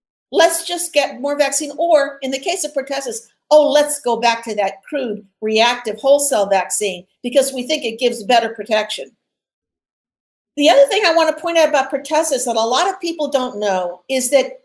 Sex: female